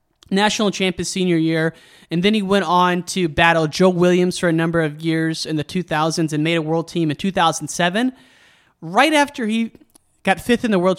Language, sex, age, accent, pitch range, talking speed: English, male, 30-49, American, 160-195 Hz, 195 wpm